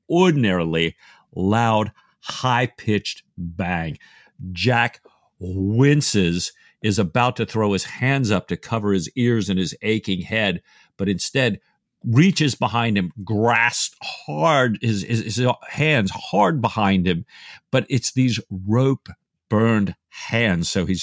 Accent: American